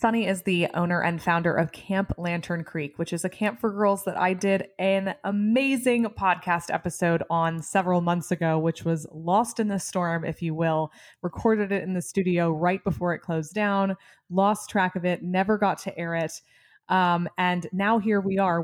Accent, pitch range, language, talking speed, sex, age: American, 165-190 Hz, English, 195 wpm, female, 20-39